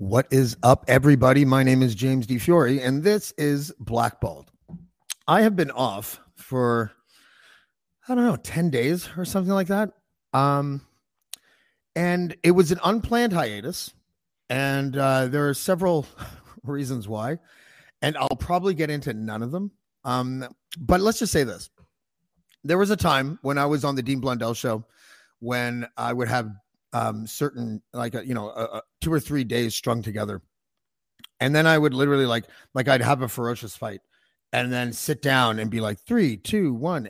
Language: English